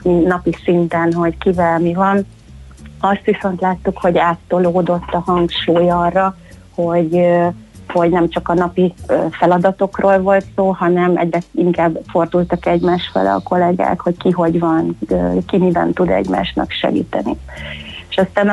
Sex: female